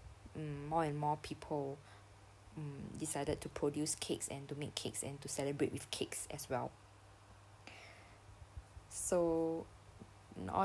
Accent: Malaysian